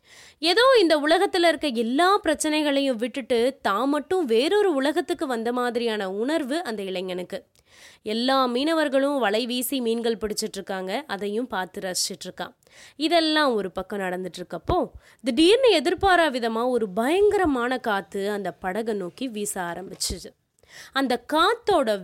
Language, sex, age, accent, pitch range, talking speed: Tamil, female, 20-39, native, 205-300 Hz, 125 wpm